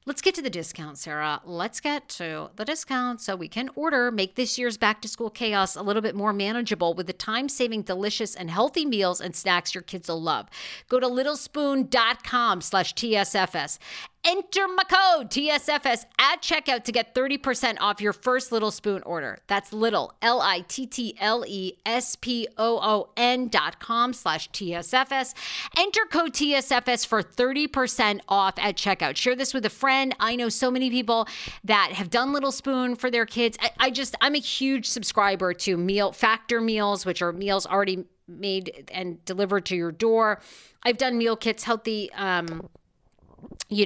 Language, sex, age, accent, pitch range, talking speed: English, female, 50-69, American, 185-250 Hz, 155 wpm